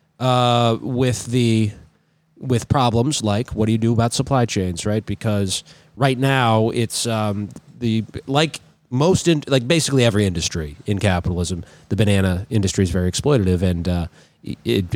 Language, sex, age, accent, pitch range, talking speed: English, male, 30-49, American, 100-125 Hz, 150 wpm